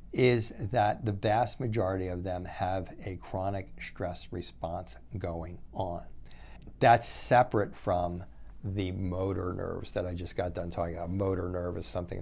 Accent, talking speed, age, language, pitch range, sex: American, 150 wpm, 50-69, English, 90-110 Hz, male